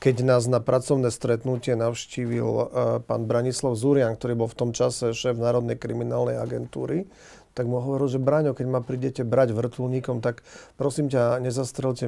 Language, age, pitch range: Slovak, 40-59, 115-125 Hz